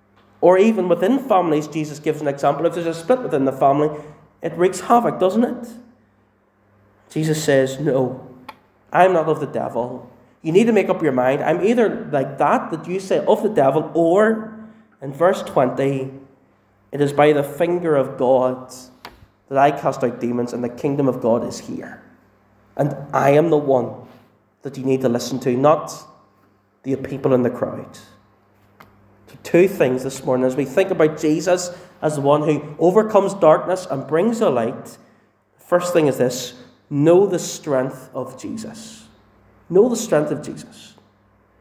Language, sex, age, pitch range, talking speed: English, male, 30-49, 125-175 Hz, 170 wpm